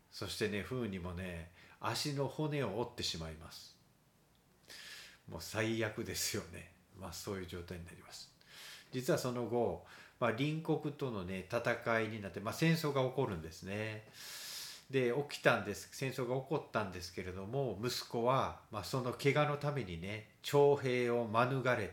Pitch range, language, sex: 100-135 Hz, Japanese, male